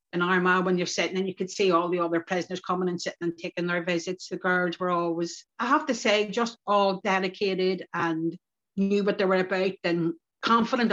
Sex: female